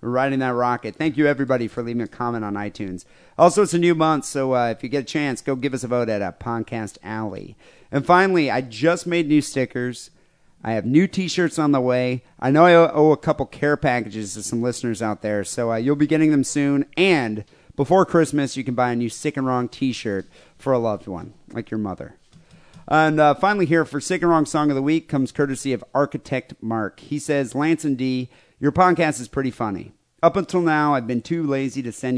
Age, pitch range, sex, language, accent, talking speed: 30-49, 120-155 Hz, male, English, American, 230 wpm